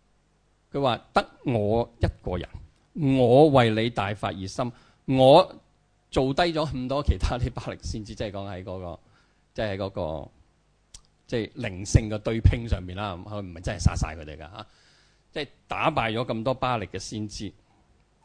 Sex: male